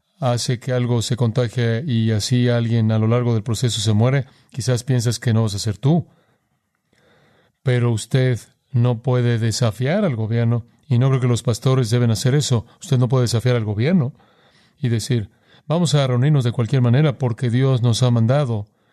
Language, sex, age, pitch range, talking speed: Spanish, male, 40-59, 115-140 Hz, 185 wpm